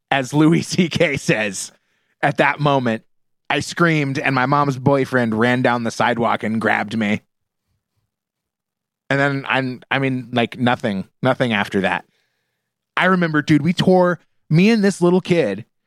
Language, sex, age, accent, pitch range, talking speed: English, male, 30-49, American, 115-165 Hz, 150 wpm